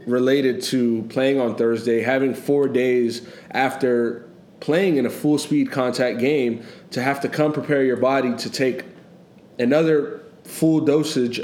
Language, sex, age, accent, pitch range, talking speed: English, male, 20-39, American, 125-170 Hz, 145 wpm